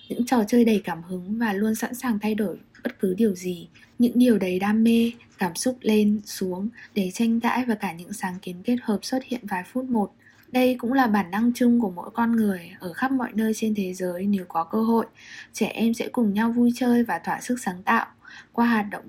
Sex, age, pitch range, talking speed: female, 10-29, 190-235 Hz, 240 wpm